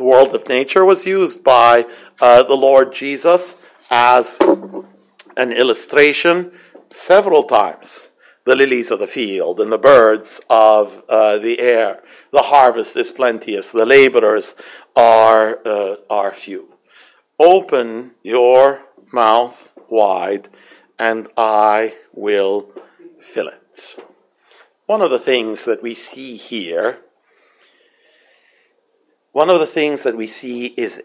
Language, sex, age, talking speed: English, male, 60-79, 120 wpm